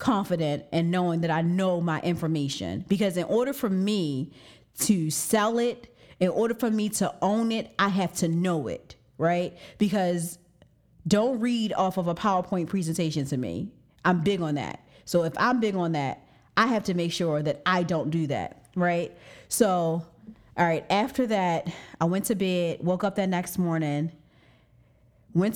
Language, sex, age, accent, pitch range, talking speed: English, female, 30-49, American, 165-230 Hz, 175 wpm